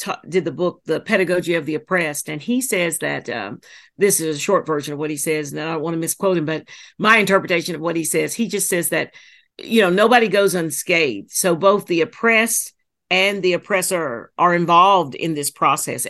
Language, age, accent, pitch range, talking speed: English, 50-69, American, 165-210 Hz, 215 wpm